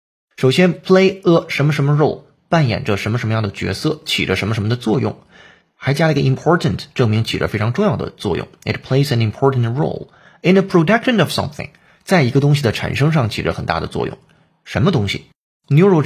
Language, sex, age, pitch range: Chinese, male, 30-49, 105-150 Hz